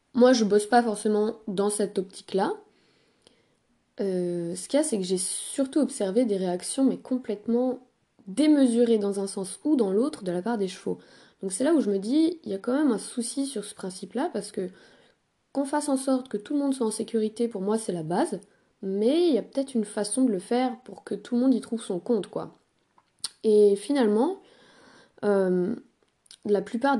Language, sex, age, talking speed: French, female, 20-39, 210 wpm